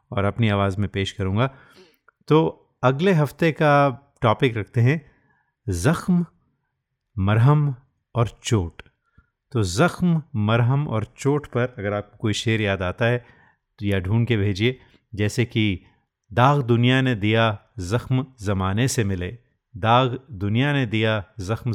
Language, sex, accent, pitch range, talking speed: Hindi, male, native, 100-125 Hz, 140 wpm